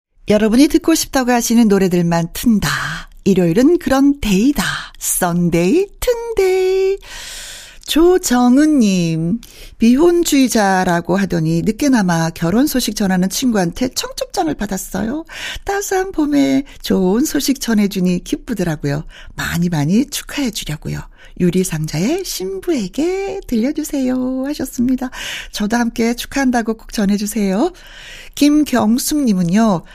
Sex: female